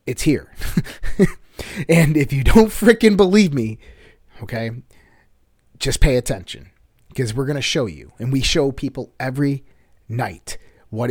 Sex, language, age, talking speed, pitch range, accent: male, English, 30-49, 140 wpm, 110-145 Hz, American